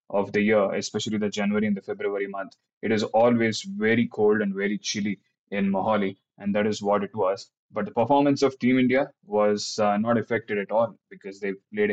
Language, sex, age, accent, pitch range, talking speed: English, male, 20-39, Indian, 100-110 Hz, 205 wpm